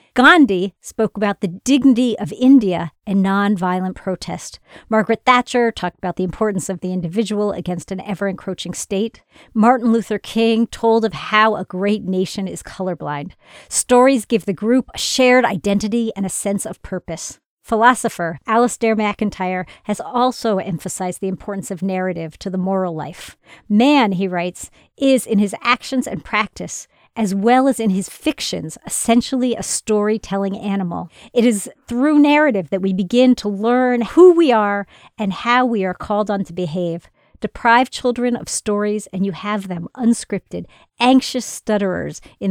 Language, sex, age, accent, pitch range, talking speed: English, female, 50-69, American, 190-235 Hz, 155 wpm